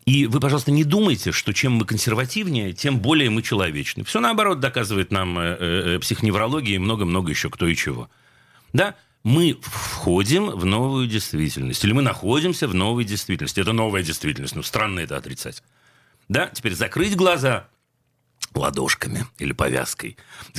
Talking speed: 150 wpm